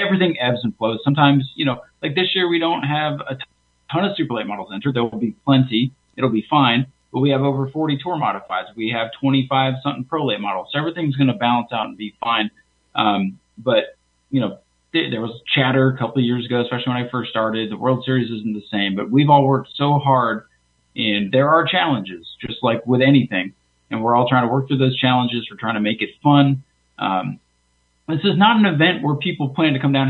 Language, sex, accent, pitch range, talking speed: English, male, American, 115-150 Hz, 230 wpm